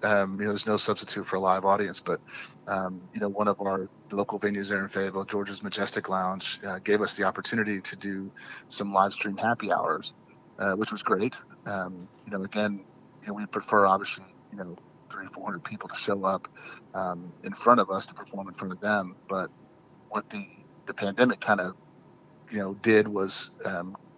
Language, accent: English, American